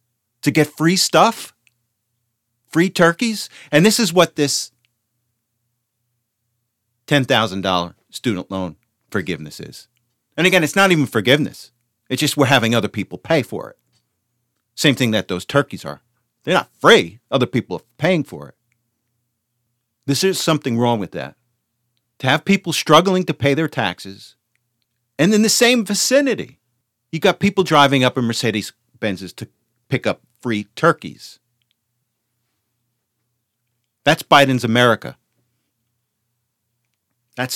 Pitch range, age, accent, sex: 115-145 Hz, 40-59, American, male